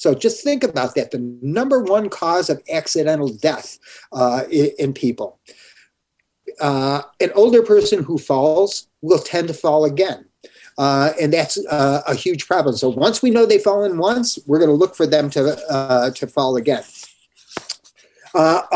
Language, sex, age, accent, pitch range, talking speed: English, male, 50-69, American, 140-190 Hz, 165 wpm